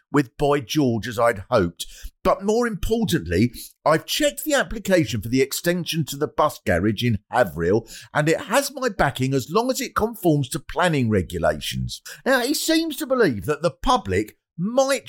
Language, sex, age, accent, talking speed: English, male, 50-69, British, 175 wpm